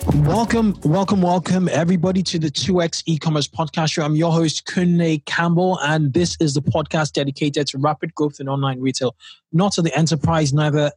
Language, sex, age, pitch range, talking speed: English, male, 20-39, 135-160 Hz, 175 wpm